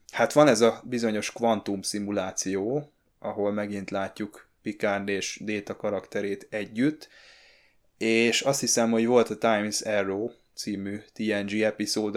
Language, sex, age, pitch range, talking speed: Hungarian, male, 20-39, 100-115 Hz, 125 wpm